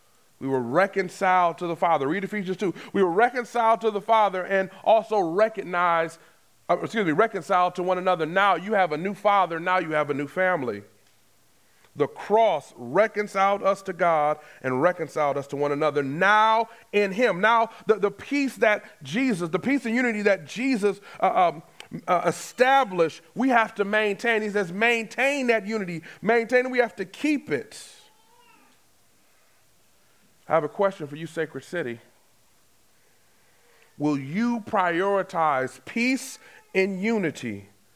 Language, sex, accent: English, male, American